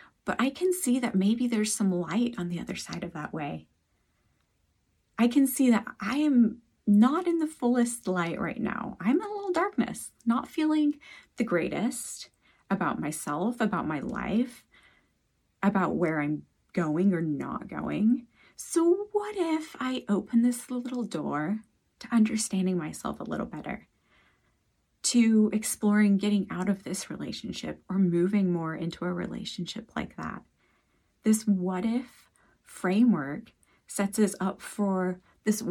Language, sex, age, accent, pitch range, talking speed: English, female, 30-49, American, 185-245 Hz, 150 wpm